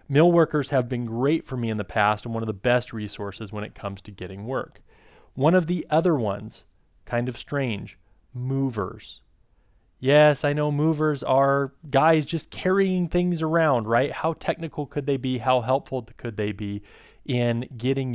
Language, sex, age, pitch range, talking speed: English, male, 30-49, 110-145 Hz, 180 wpm